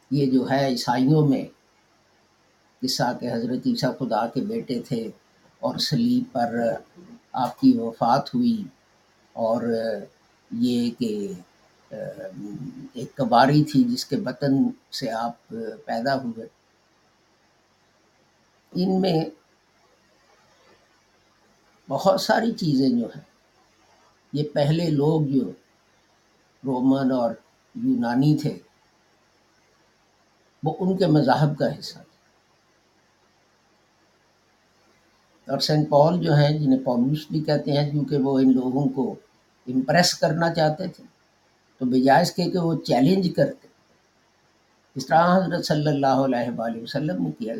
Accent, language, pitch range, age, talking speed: Indian, English, 130-175 Hz, 50-69, 95 wpm